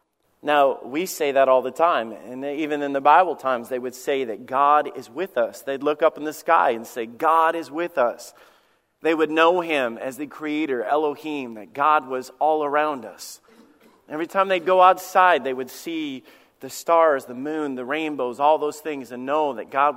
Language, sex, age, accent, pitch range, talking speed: English, male, 40-59, American, 135-180 Hz, 205 wpm